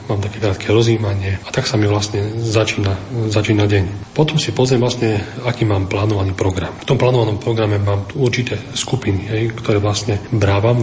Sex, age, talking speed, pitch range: male, 40-59, 170 wpm, 110-125 Hz